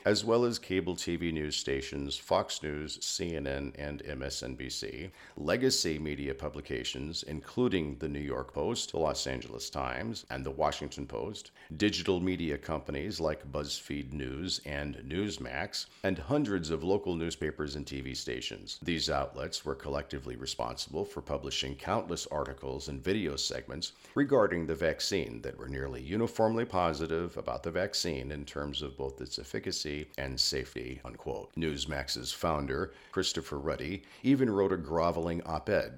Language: English